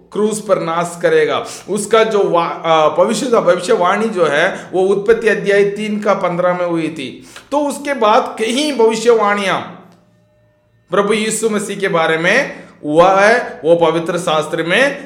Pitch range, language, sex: 170-230 Hz, Hindi, male